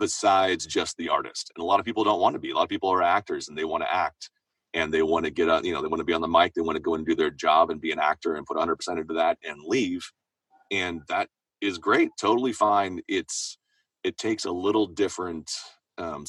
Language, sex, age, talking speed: English, male, 30-49, 265 wpm